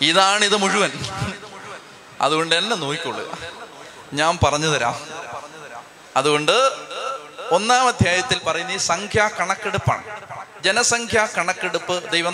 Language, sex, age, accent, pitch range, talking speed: Malayalam, male, 30-49, native, 170-210 Hz, 90 wpm